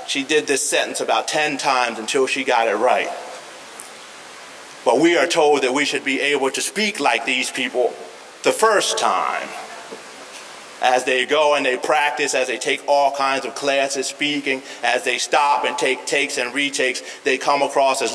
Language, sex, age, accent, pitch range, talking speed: English, male, 30-49, American, 115-145 Hz, 180 wpm